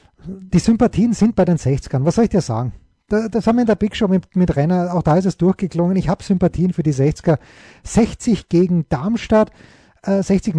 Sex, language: male, German